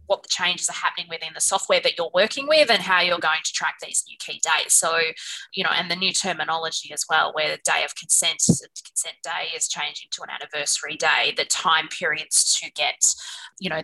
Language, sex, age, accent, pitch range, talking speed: English, female, 20-39, Australian, 165-200 Hz, 220 wpm